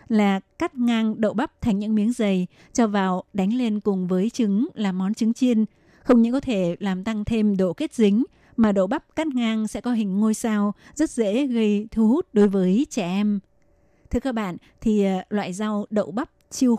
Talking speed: 205 wpm